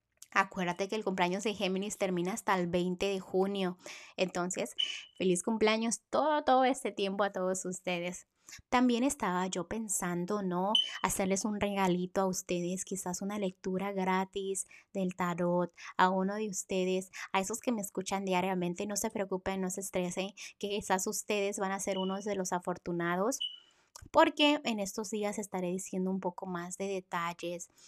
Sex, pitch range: female, 180-205 Hz